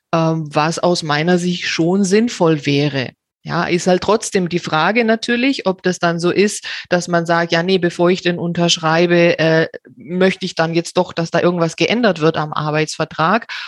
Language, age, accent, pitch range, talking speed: German, 30-49, German, 160-185 Hz, 180 wpm